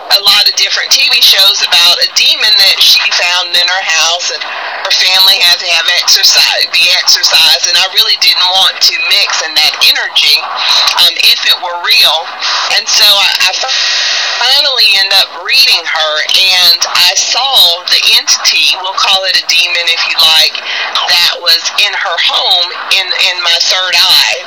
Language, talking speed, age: English, 175 wpm, 40-59